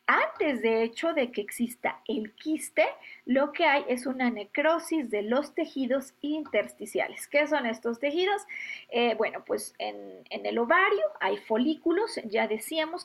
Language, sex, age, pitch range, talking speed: Spanish, female, 40-59, 225-315 Hz, 150 wpm